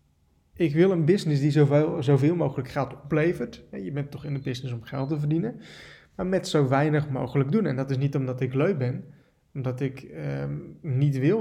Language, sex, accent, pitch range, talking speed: Dutch, male, Dutch, 130-160 Hz, 200 wpm